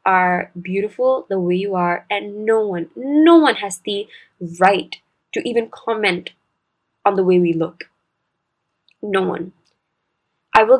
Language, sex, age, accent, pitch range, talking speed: English, female, 20-39, Indian, 180-235 Hz, 145 wpm